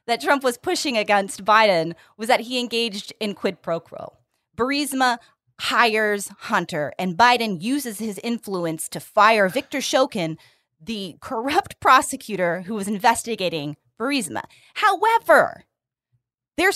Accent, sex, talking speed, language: American, female, 125 wpm, English